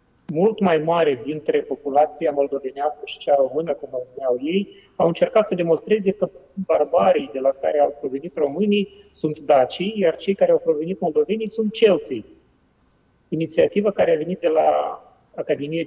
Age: 30-49